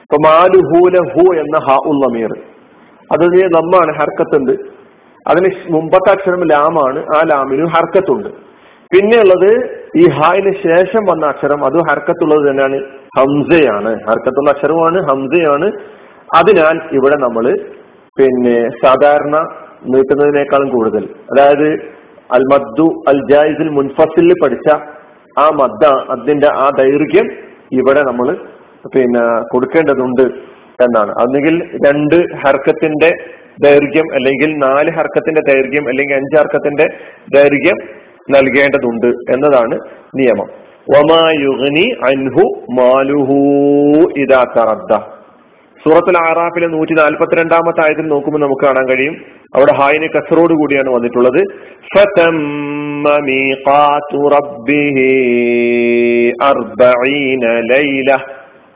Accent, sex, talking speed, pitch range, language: native, male, 80 wpm, 135-165 Hz, Malayalam